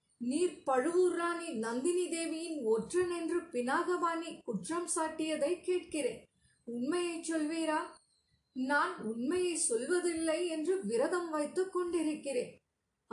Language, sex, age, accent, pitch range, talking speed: Tamil, female, 20-39, native, 300-340 Hz, 90 wpm